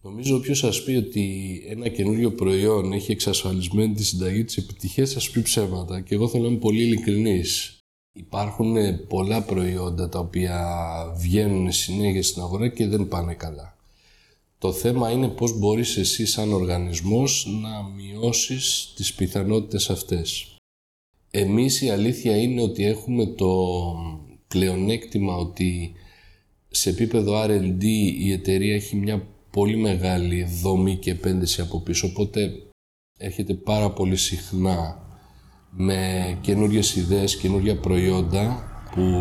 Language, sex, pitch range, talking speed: Greek, male, 90-110 Hz, 125 wpm